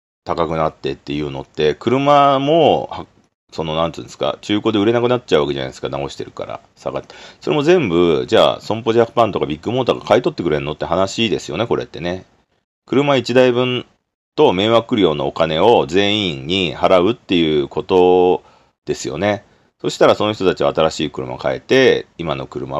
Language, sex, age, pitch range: Japanese, male, 40-59, 75-120 Hz